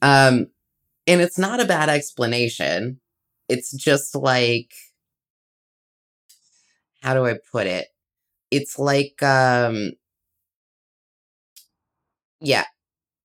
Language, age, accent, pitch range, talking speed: English, 20-39, American, 120-145 Hz, 85 wpm